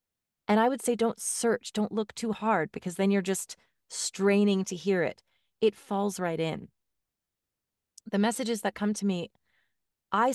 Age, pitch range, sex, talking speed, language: 30-49, 180-215 Hz, female, 170 wpm, English